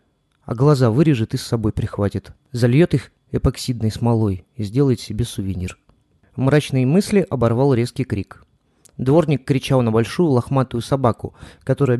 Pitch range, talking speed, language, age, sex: 115-145 Hz, 135 wpm, Russian, 30-49, male